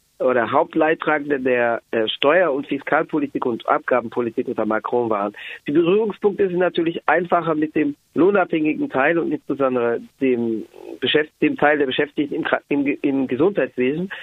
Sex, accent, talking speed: male, German, 135 wpm